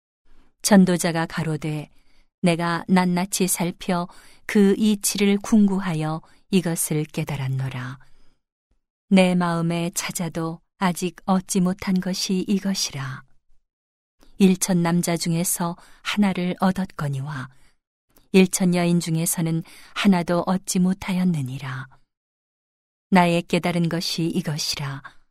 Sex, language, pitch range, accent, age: female, Korean, 160-190 Hz, native, 40-59